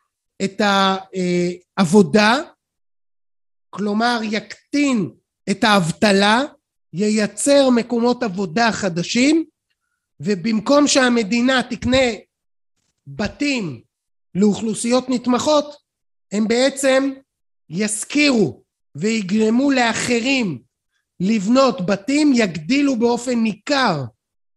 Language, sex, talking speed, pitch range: Hebrew, male, 65 wpm, 195-250 Hz